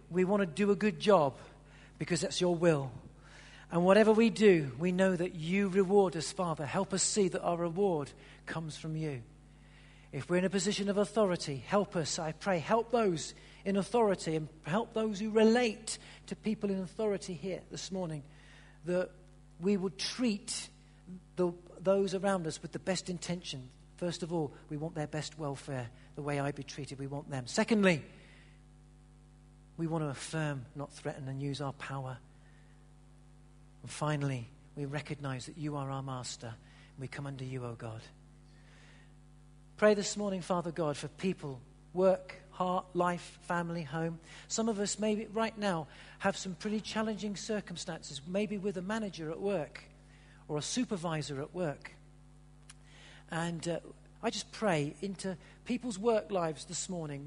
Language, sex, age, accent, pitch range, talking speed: English, male, 50-69, British, 145-195 Hz, 165 wpm